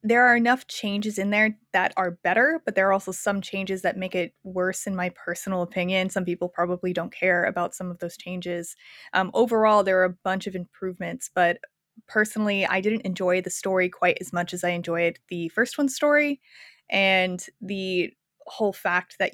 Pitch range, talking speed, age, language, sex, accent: 180-225 Hz, 195 wpm, 20-39, English, female, American